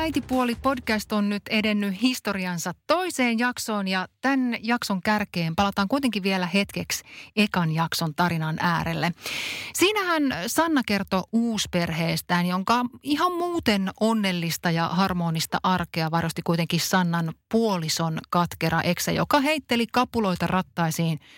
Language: Finnish